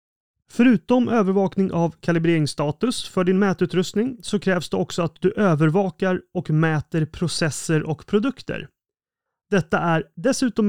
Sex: male